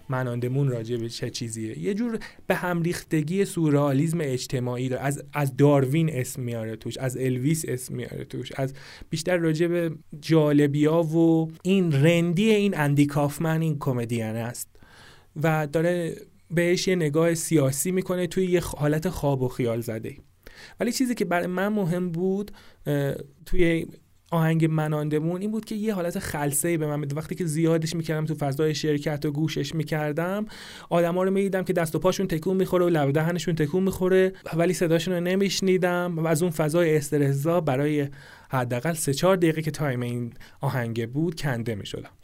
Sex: male